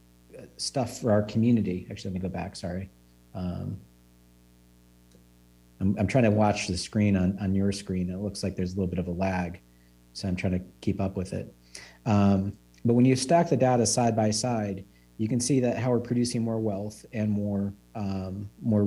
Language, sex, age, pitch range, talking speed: English, male, 40-59, 95-120 Hz, 200 wpm